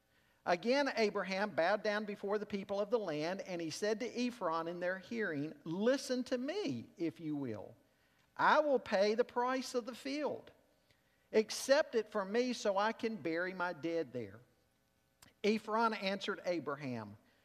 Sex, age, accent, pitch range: male, 50-69, American, 155-225 Hz